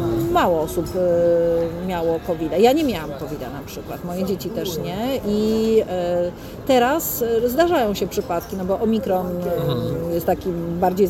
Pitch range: 180-235 Hz